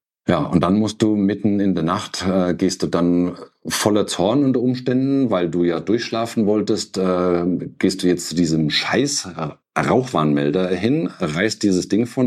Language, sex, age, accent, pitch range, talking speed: German, male, 50-69, German, 85-105 Hz, 165 wpm